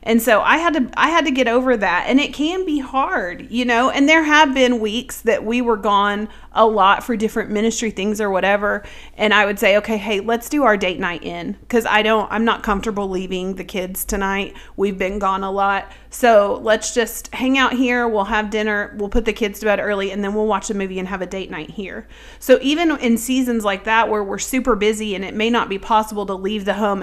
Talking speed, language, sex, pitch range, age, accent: 245 wpm, English, female, 195-235 Hz, 40-59, American